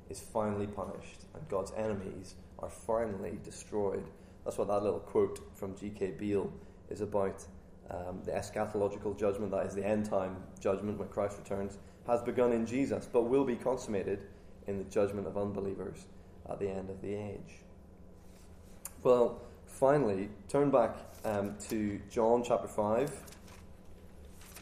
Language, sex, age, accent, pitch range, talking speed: English, male, 20-39, British, 95-110 Hz, 145 wpm